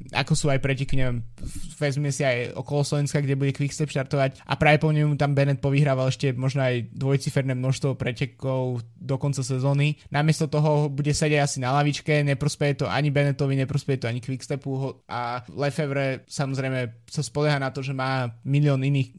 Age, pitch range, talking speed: 20-39, 130-150 Hz, 170 wpm